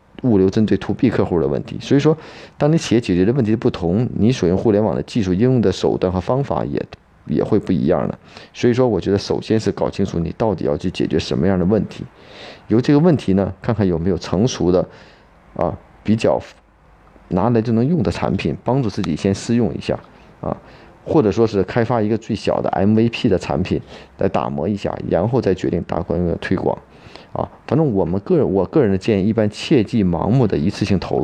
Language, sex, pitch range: Chinese, male, 95-115 Hz